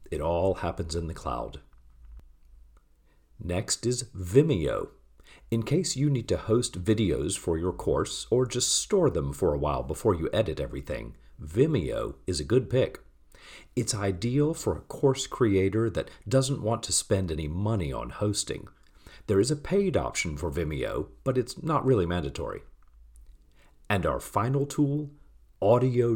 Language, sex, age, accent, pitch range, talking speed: English, male, 40-59, American, 75-125 Hz, 155 wpm